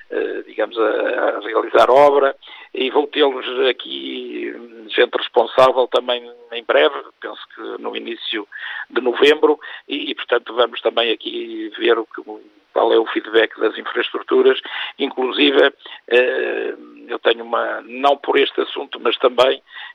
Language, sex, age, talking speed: Portuguese, male, 50-69, 140 wpm